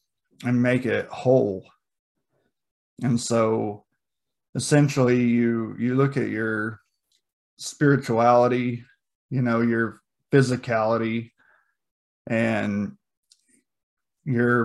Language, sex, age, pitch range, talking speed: English, male, 20-39, 110-125 Hz, 80 wpm